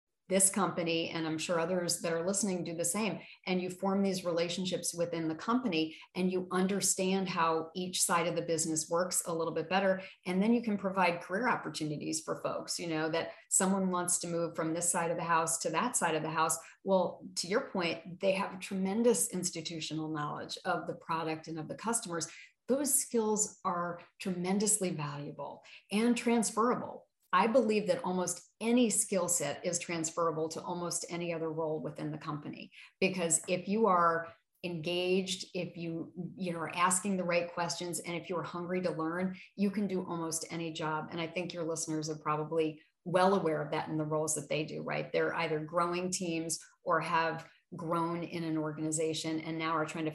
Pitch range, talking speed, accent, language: 160-185 Hz, 190 wpm, American, English